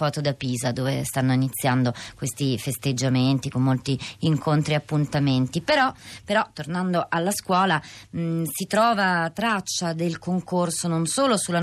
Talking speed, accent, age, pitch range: 140 wpm, native, 30-49, 145-180 Hz